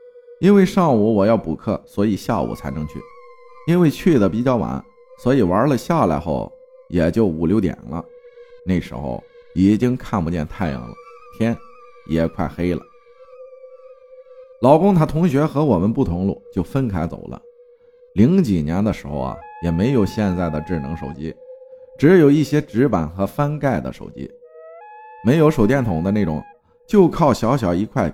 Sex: male